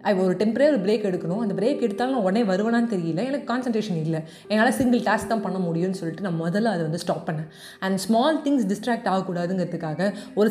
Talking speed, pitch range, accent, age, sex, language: 195 wpm, 185-235 Hz, native, 20-39, female, Tamil